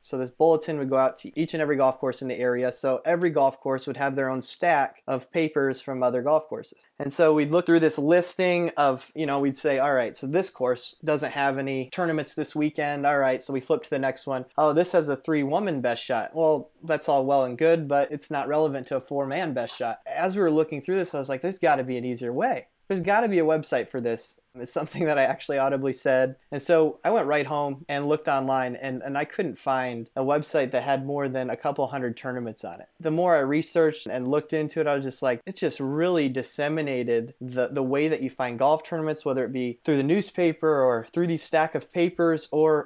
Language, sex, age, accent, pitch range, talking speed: English, male, 20-39, American, 135-155 Hz, 250 wpm